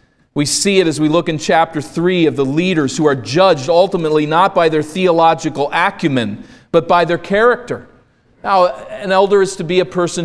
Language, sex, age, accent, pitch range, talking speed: English, male, 40-59, American, 145-190 Hz, 195 wpm